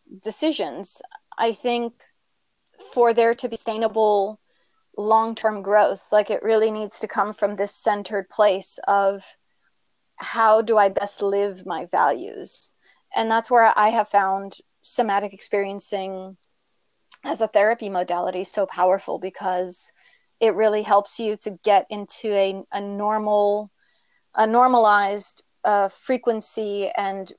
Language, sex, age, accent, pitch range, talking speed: English, female, 30-49, American, 200-225 Hz, 125 wpm